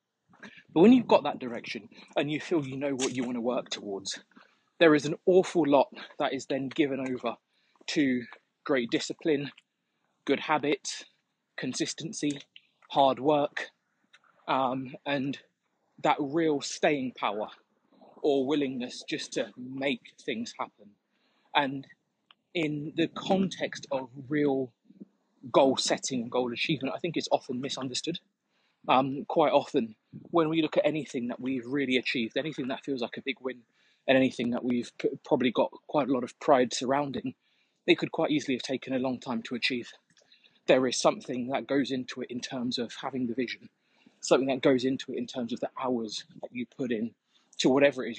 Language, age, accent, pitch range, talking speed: English, 20-39, British, 125-155 Hz, 170 wpm